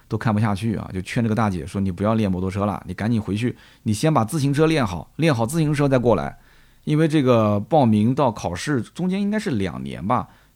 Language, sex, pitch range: Chinese, male, 105-150 Hz